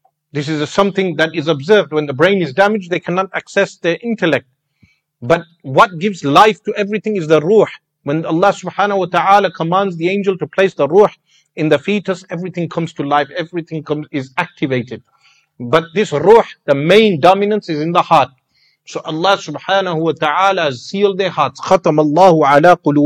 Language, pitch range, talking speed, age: English, 150-195 Hz, 175 wpm, 50-69